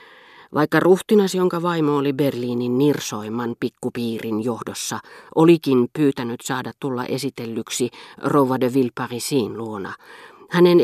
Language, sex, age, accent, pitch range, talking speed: Finnish, female, 40-59, native, 120-160 Hz, 100 wpm